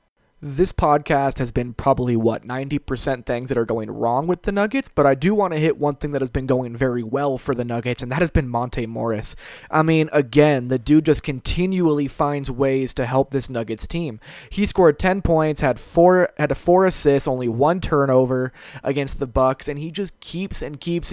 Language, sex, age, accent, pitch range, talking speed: English, male, 20-39, American, 130-155 Hz, 205 wpm